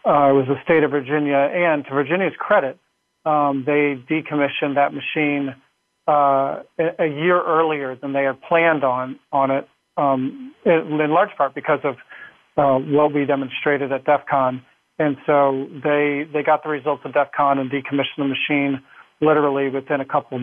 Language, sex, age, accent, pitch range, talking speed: English, male, 40-59, American, 135-150 Hz, 165 wpm